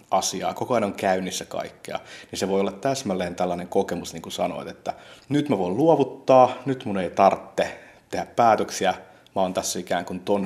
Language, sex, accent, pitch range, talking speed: Finnish, male, native, 95-125 Hz, 190 wpm